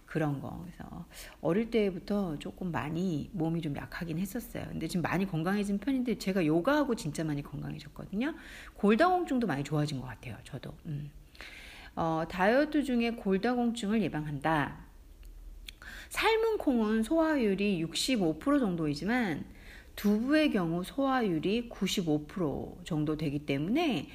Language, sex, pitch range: Korean, female, 155-245 Hz